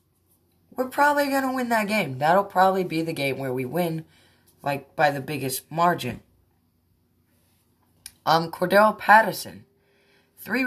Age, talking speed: 10-29, 135 wpm